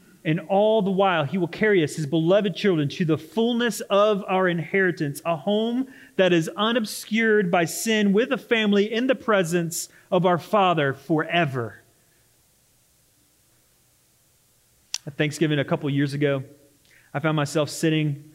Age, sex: 30-49, male